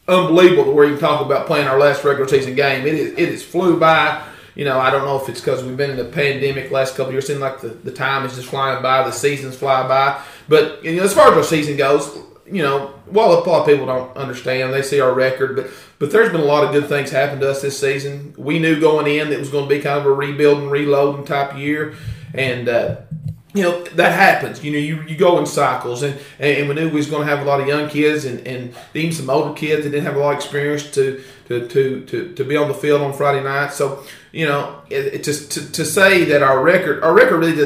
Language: English